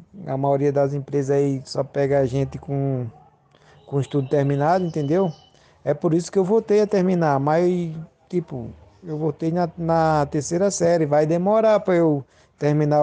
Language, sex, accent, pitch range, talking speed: Portuguese, male, Brazilian, 135-165 Hz, 160 wpm